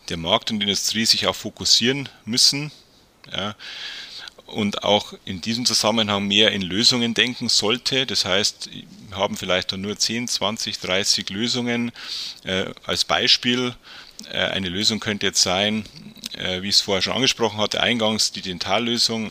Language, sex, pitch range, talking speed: German, male, 95-115 Hz, 155 wpm